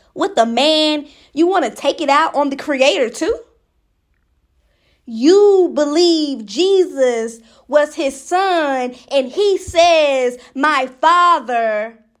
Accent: American